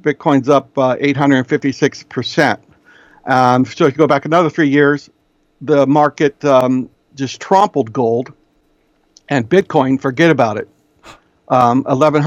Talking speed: 115 wpm